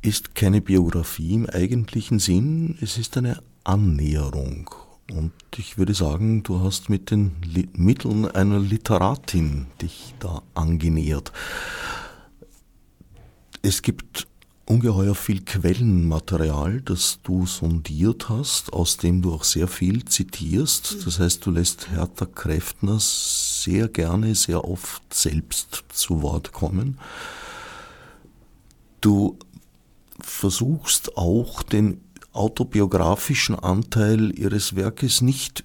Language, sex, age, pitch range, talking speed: German, male, 50-69, 90-110 Hz, 105 wpm